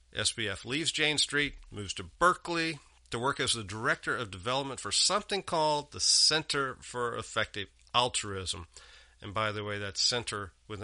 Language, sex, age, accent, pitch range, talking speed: English, male, 40-59, American, 95-130 Hz, 160 wpm